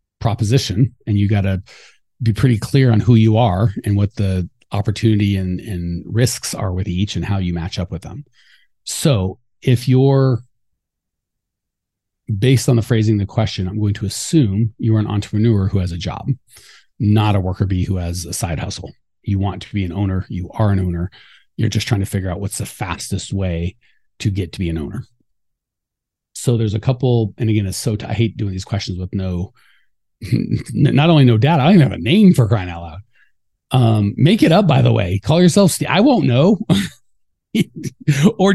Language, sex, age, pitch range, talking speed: English, male, 30-49, 100-130 Hz, 200 wpm